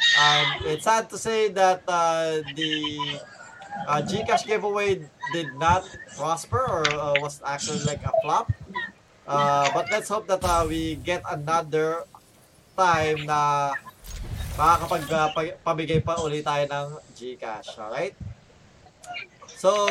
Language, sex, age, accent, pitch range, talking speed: Filipino, male, 20-39, native, 150-195 Hz, 120 wpm